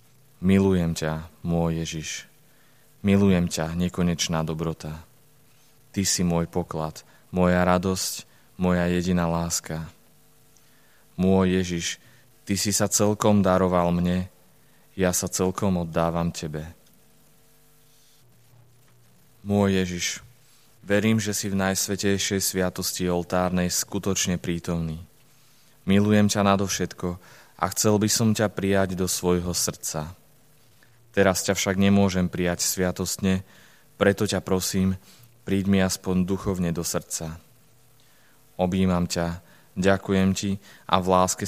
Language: Slovak